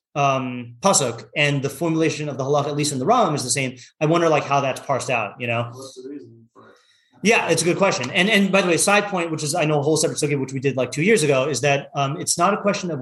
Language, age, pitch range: English, 30-49, 125-155 Hz